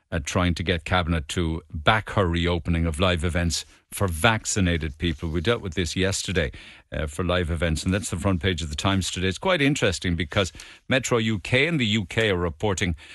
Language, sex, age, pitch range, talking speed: English, male, 50-69, 85-110 Hz, 200 wpm